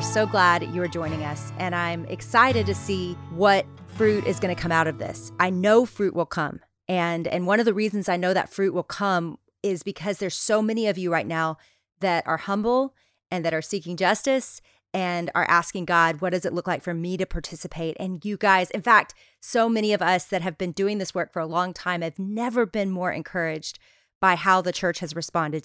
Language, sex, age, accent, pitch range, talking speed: English, female, 30-49, American, 175-215 Hz, 225 wpm